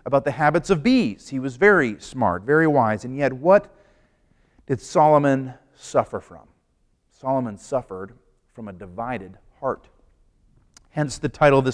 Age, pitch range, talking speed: 40-59, 110-145 Hz, 150 wpm